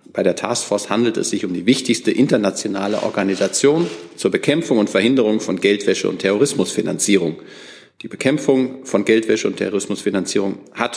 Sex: male